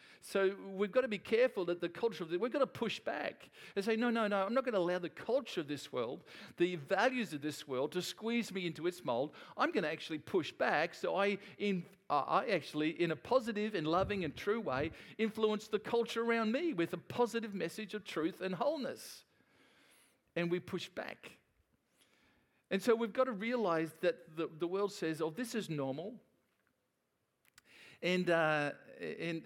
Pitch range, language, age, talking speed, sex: 145-210 Hz, English, 50-69, 195 wpm, male